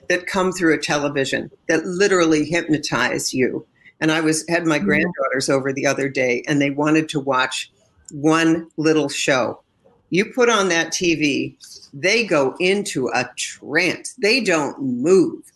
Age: 50-69